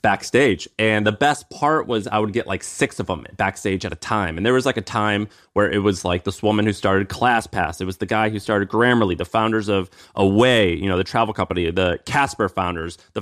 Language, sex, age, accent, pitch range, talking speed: English, male, 30-49, American, 95-110 Hz, 235 wpm